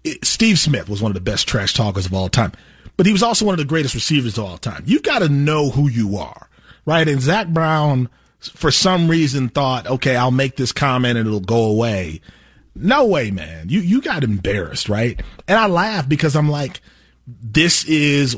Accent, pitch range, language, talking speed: American, 115-160 Hz, English, 210 wpm